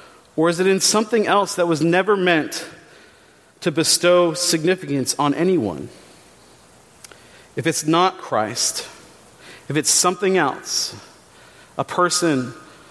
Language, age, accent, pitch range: English, 40-59, American, 145-175 Hz